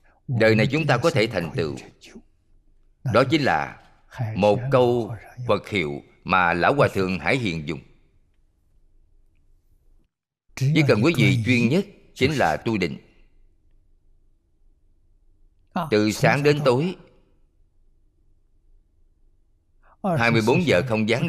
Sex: male